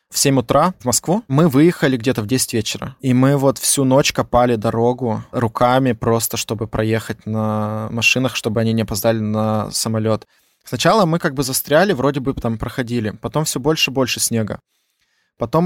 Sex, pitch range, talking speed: male, 120-140 Hz, 175 wpm